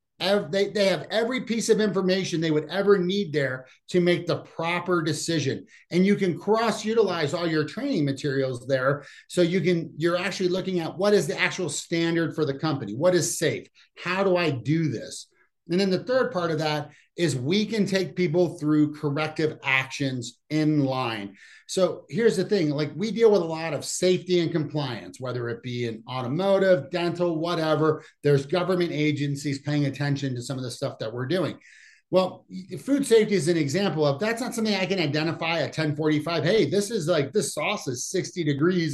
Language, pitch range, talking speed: English, 145-185 Hz, 190 wpm